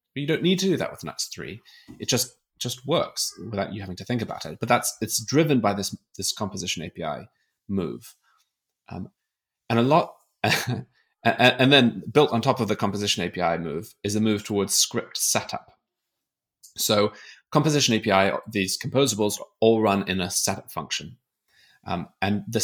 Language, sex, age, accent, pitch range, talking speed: English, male, 20-39, British, 100-125 Hz, 170 wpm